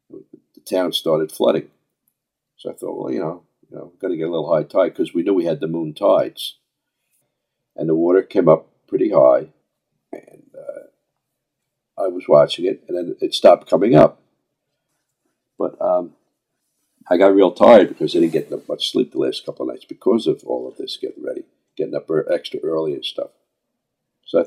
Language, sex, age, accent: English, male, 50-69, American